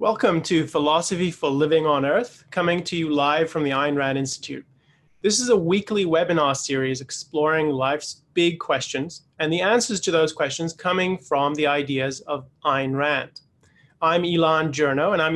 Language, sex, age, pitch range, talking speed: English, male, 30-49, 140-165 Hz, 170 wpm